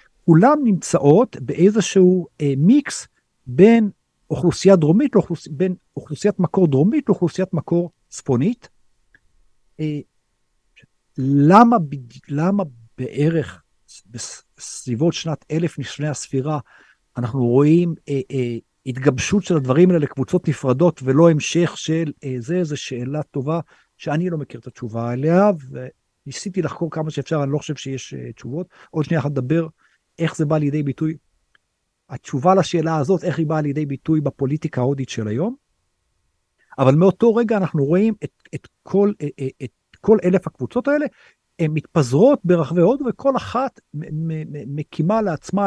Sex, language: male, Hebrew